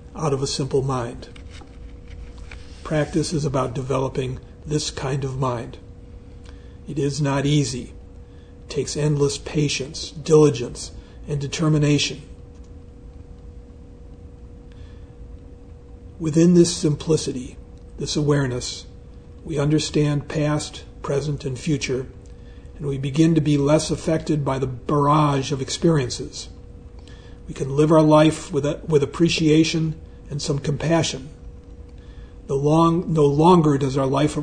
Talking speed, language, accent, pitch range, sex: 115 wpm, English, American, 95-155 Hz, male